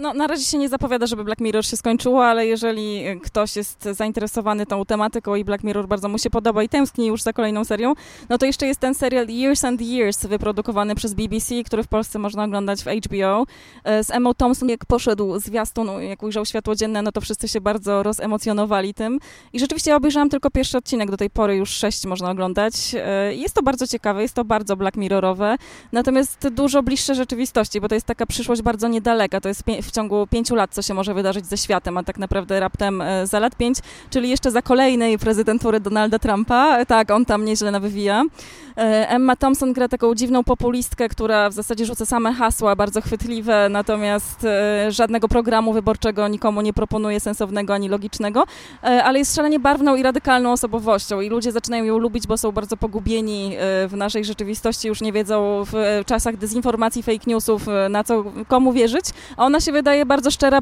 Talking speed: 190 wpm